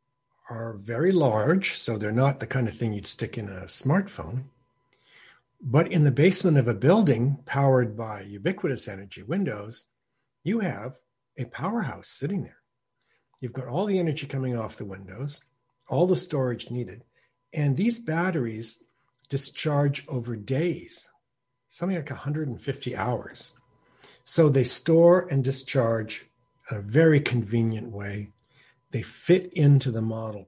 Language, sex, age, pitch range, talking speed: English, male, 60-79, 120-150 Hz, 140 wpm